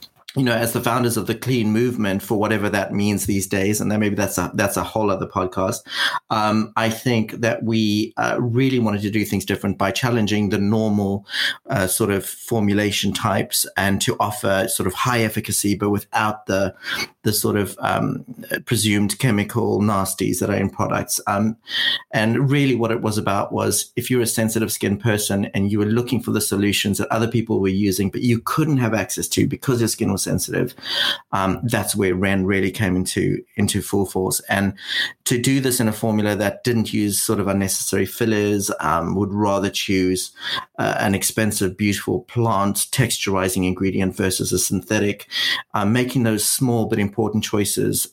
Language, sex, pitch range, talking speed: English, male, 100-115 Hz, 185 wpm